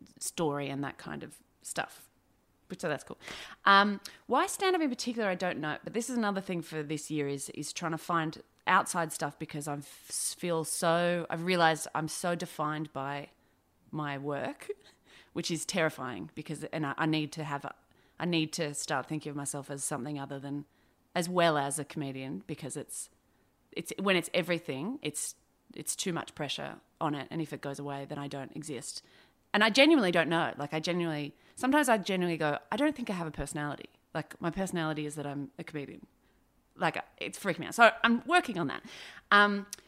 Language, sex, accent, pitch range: English, female, Australian, 150-200 Hz